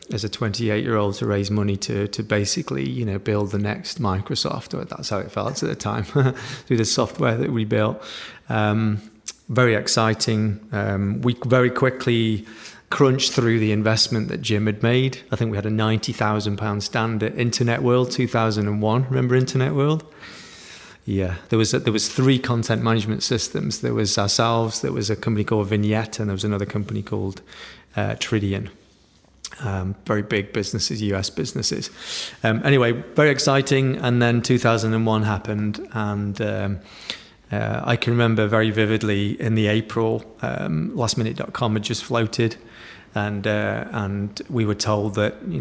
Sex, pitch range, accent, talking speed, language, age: male, 105-120 Hz, British, 165 wpm, English, 30-49